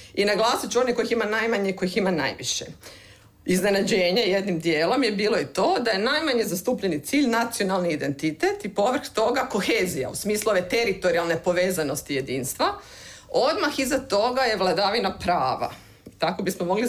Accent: native